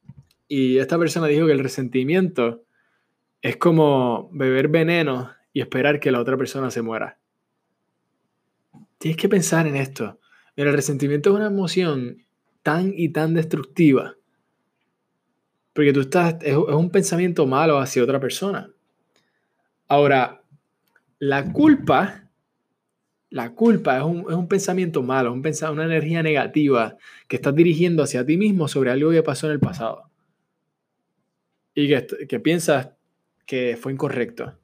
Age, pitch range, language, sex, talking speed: 20-39, 130-165 Hz, Spanish, male, 140 wpm